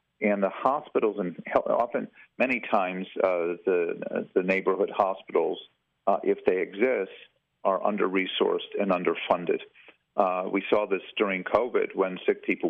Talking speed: 135 wpm